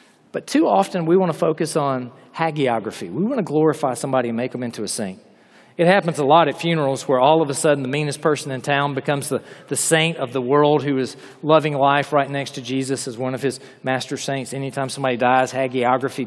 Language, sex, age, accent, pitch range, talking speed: English, male, 40-59, American, 130-155 Hz, 225 wpm